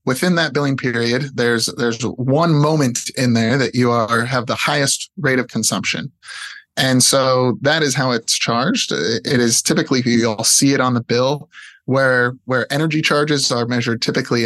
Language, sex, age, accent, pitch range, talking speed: English, male, 20-39, American, 115-135 Hz, 180 wpm